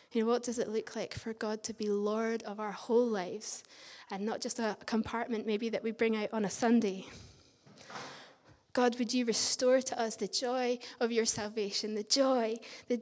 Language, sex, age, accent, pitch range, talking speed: English, female, 20-39, British, 220-255 Hz, 200 wpm